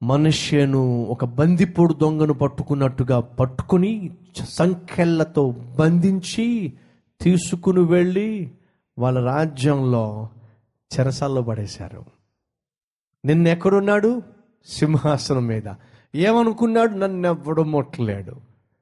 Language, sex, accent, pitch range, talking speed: Telugu, male, native, 130-190 Hz, 65 wpm